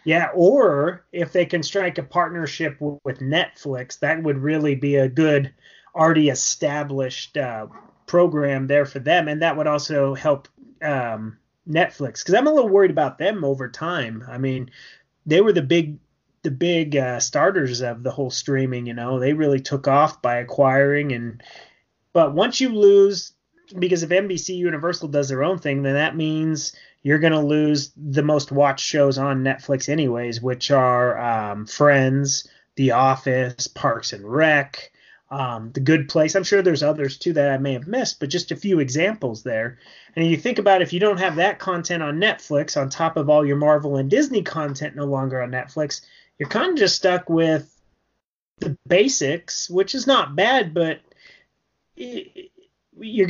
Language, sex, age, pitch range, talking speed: English, male, 30-49, 135-175 Hz, 175 wpm